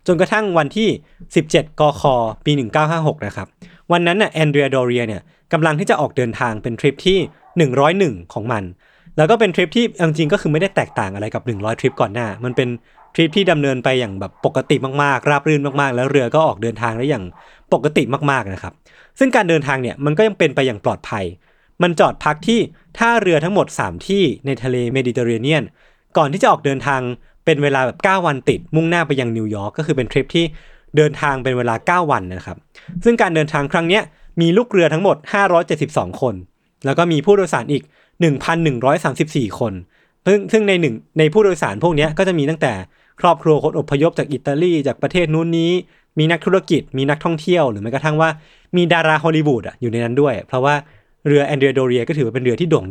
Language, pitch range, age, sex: Thai, 130-170 Hz, 20-39, male